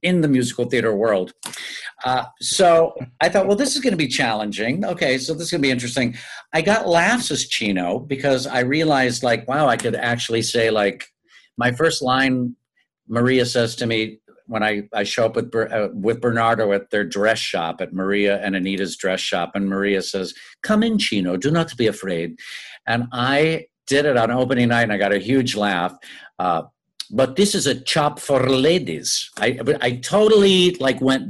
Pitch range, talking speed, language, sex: 110-150 Hz, 190 wpm, English, male